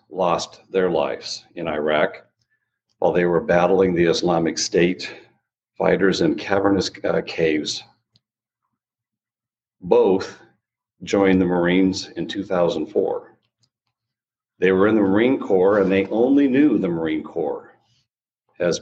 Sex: male